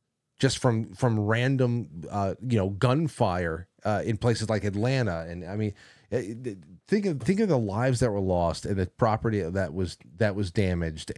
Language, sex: English, male